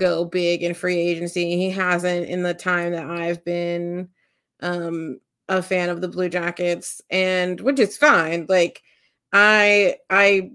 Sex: female